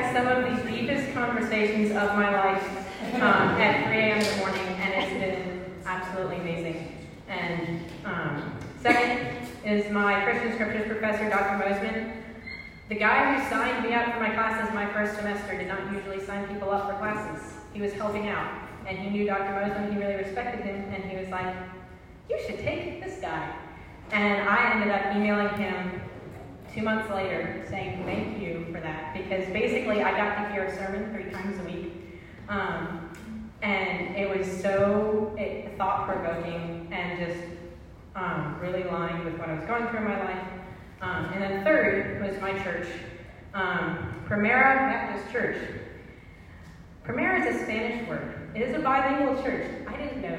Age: 30-49